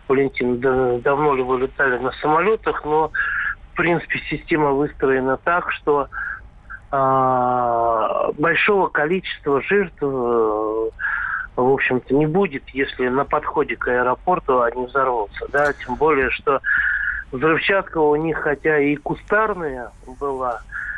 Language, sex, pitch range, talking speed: Russian, male, 130-155 Hz, 120 wpm